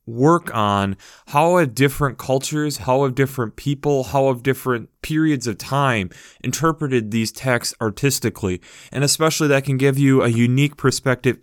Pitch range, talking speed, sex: 115-145 Hz, 145 wpm, male